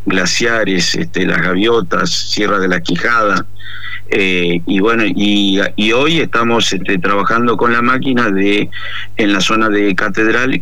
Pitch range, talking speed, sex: 95-105 Hz, 145 wpm, male